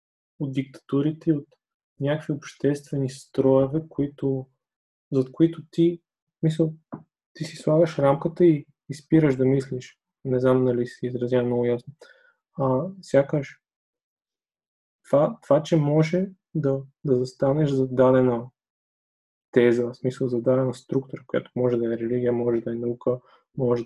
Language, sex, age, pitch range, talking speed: Bulgarian, male, 20-39, 125-150 Hz, 125 wpm